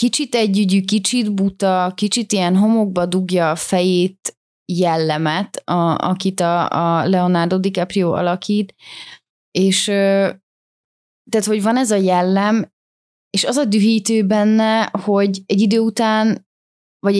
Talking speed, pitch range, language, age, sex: 120 wpm, 175-205 Hz, Hungarian, 20-39, female